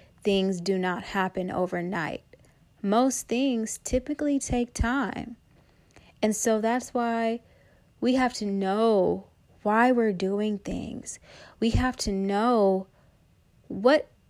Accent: American